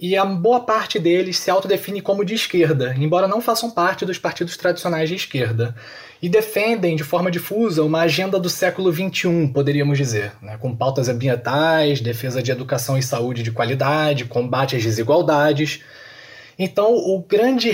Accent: Brazilian